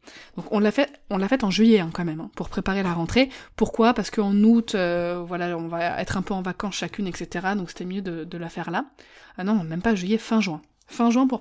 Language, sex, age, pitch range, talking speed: French, female, 20-39, 185-230 Hz, 265 wpm